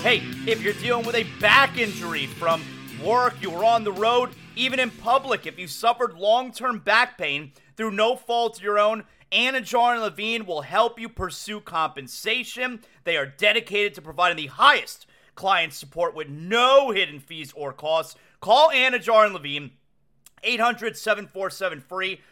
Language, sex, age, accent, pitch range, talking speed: English, male, 30-49, American, 170-230 Hz, 155 wpm